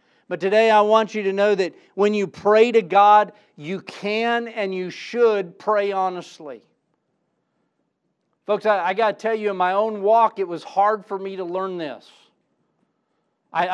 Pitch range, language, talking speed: 165-210 Hz, English, 175 wpm